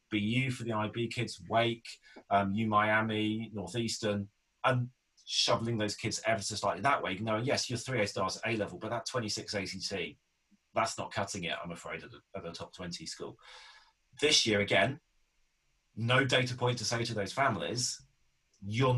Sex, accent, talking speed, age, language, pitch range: male, British, 190 wpm, 30-49, English, 100-125 Hz